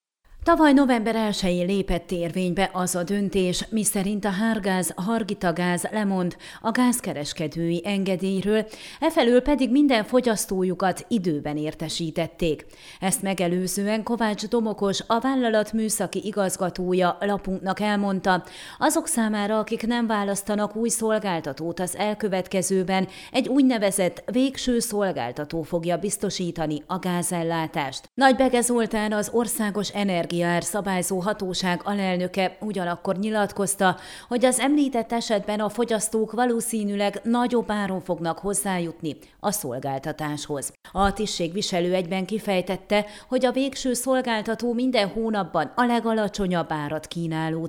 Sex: female